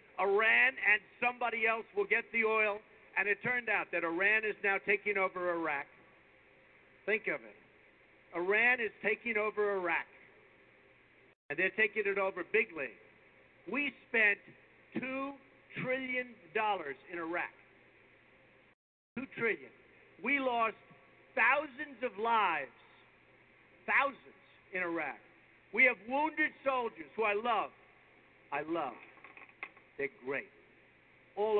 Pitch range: 210-265 Hz